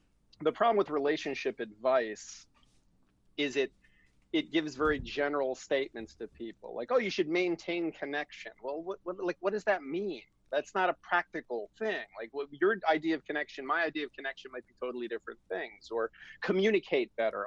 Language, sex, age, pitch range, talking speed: English, male, 40-59, 145-235 Hz, 175 wpm